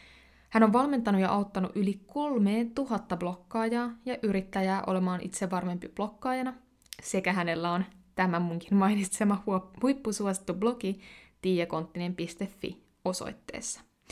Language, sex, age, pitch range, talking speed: Finnish, female, 20-39, 180-225 Hz, 100 wpm